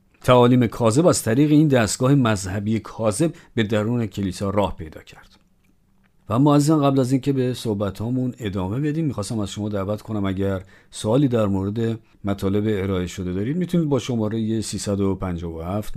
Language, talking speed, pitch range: Persian, 155 wpm, 100-130 Hz